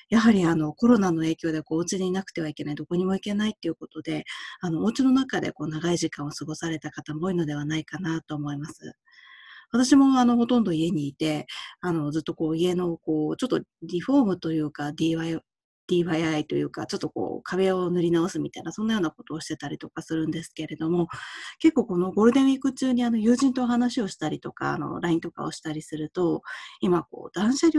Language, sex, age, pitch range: Japanese, female, 20-39, 155-235 Hz